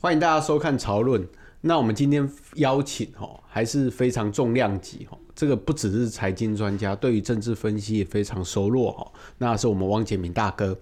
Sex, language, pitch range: male, Chinese, 110-140 Hz